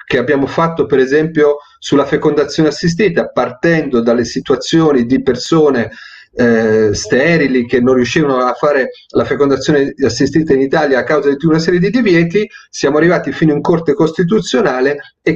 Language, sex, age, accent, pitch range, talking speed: Italian, male, 40-59, native, 125-175 Hz, 150 wpm